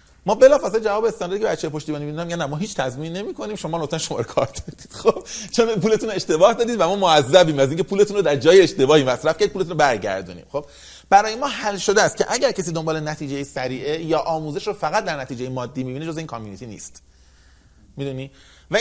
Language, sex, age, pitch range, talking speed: Persian, male, 30-49, 130-200 Hz, 205 wpm